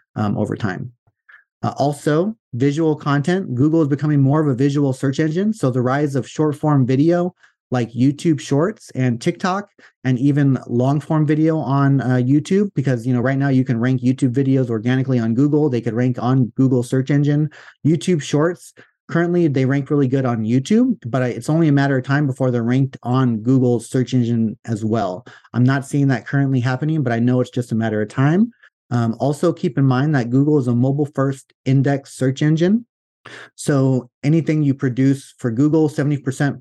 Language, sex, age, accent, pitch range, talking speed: English, male, 30-49, American, 120-145 Hz, 190 wpm